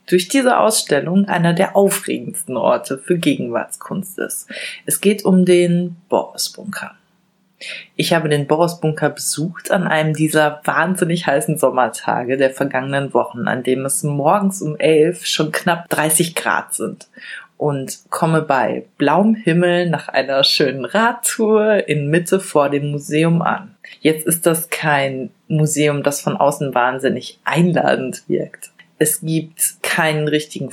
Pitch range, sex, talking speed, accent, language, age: 145-190 Hz, female, 135 wpm, German, German, 30-49